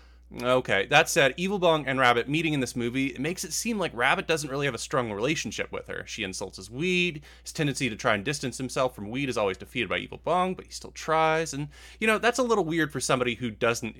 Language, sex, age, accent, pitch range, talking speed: English, male, 20-39, American, 100-160 Hz, 255 wpm